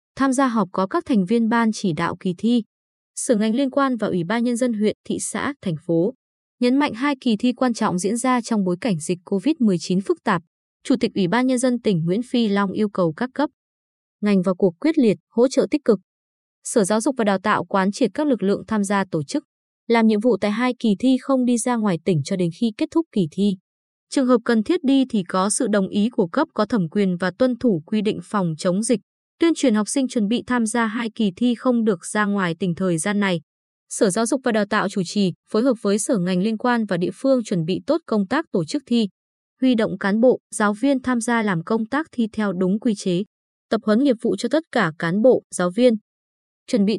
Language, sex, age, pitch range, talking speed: Vietnamese, female, 20-39, 195-250 Hz, 250 wpm